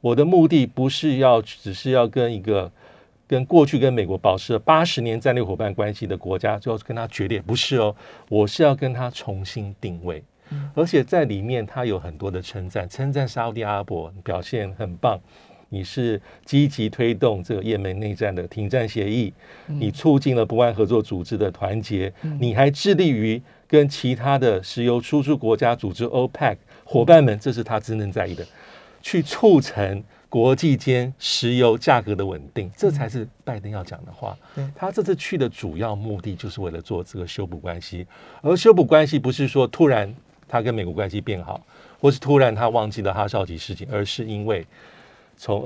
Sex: male